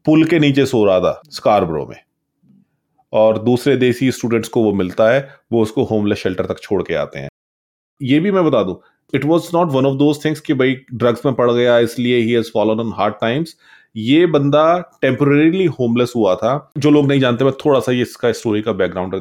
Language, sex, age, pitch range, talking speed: Punjabi, male, 30-49, 105-135 Hz, 215 wpm